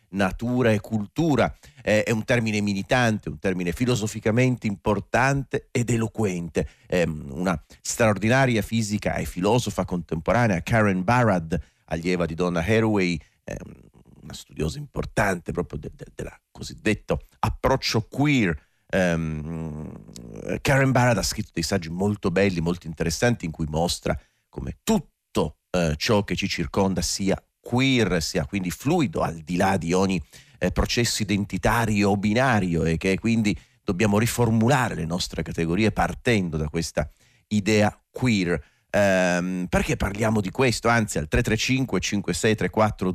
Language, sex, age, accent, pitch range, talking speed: Italian, male, 40-59, native, 85-110 Hz, 135 wpm